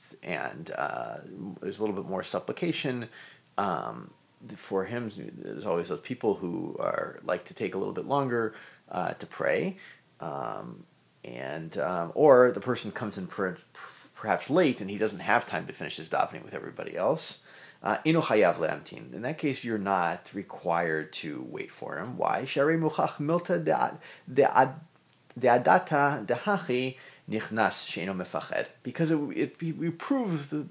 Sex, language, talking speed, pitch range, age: male, English, 140 wpm, 100-145 Hz, 30-49